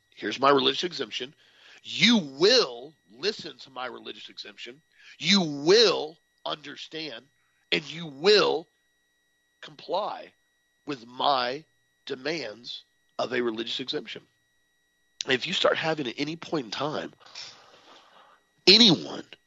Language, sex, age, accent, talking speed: English, male, 40-59, American, 110 wpm